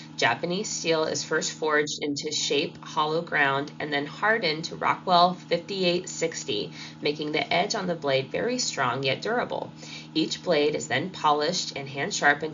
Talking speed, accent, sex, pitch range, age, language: 160 wpm, American, female, 135-165 Hz, 20-39, English